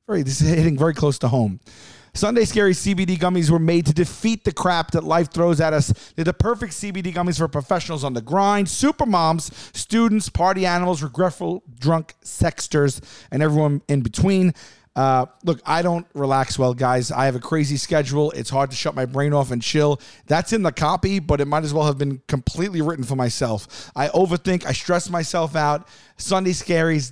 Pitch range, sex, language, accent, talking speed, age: 135-175 Hz, male, English, American, 195 wpm, 40-59